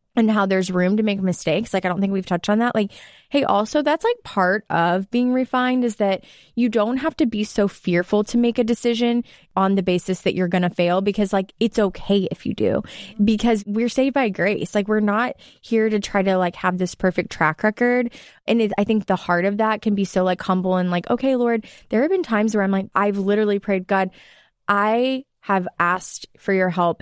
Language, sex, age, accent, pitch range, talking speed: English, female, 20-39, American, 180-225 Hz, 230 wpm